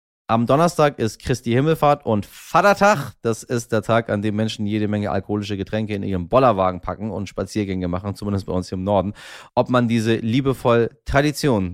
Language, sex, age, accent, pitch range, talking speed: German, male, 30-49, German, 90-120 Hz, 185 wpm